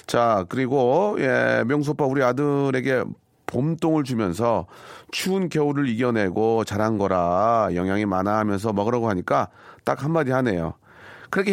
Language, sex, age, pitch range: Korean, male, 40-59, 110-160 Hz